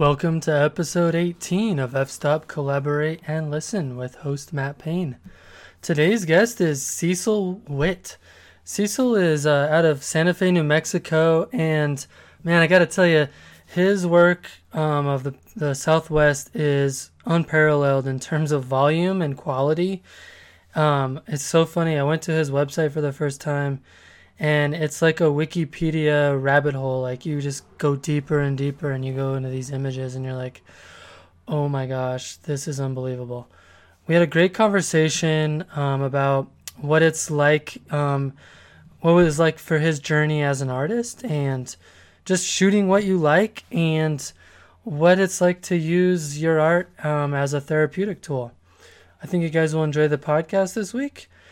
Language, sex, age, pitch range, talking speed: English, male, 20-39, 140-170 Hz, 165 wpm